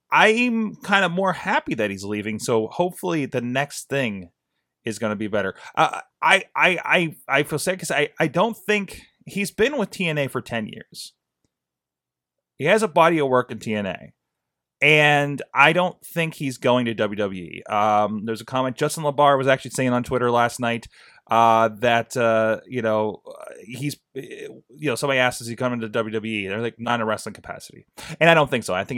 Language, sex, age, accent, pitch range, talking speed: English, male, 30-49, American, 110-140 Hz, 195 wpm